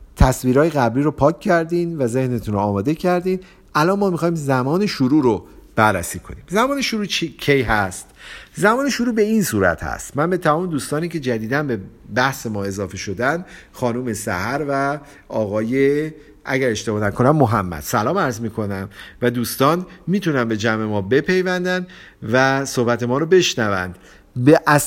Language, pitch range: Persian, 110-155 Hz